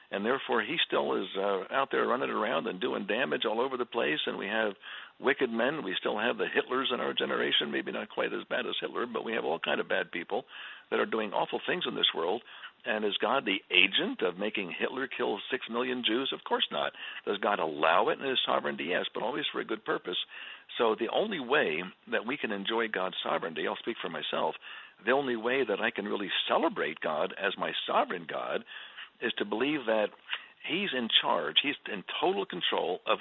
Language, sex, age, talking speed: English, male, 60-79, 220 wpm